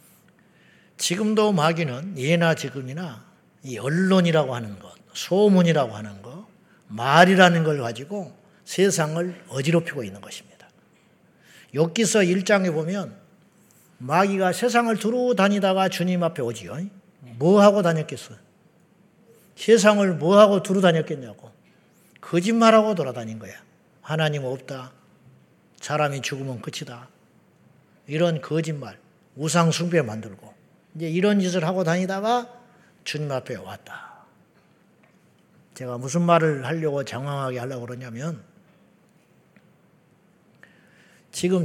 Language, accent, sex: Korean, Japanese, male